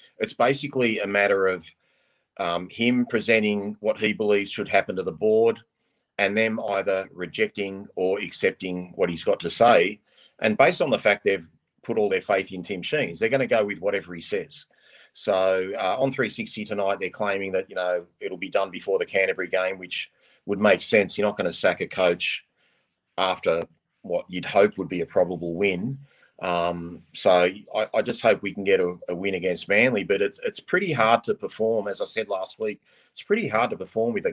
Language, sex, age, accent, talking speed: English, male, 30-49, Australian, 205 wpm